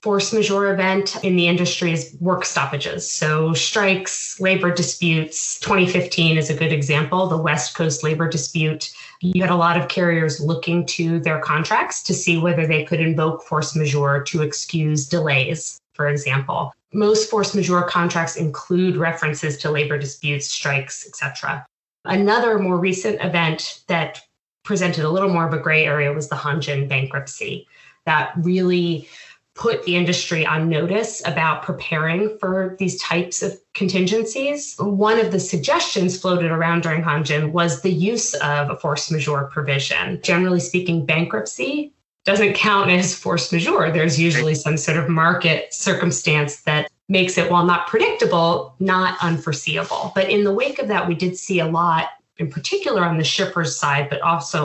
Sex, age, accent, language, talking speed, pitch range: female, 20-39, American, English, 160 wpm, 155-185 Hz